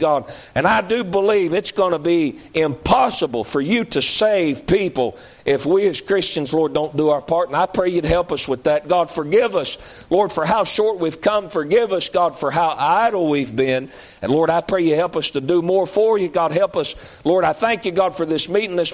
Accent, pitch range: American, 160-210 Hz